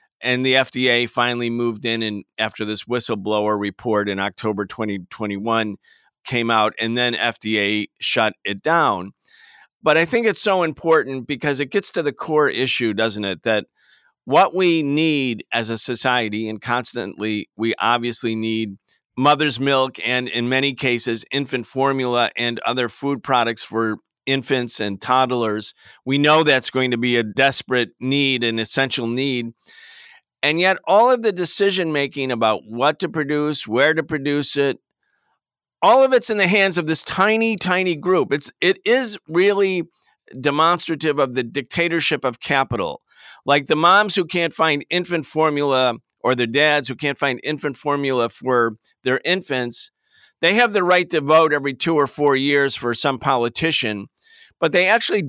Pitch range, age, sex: 120-160 Hz, 40-59, male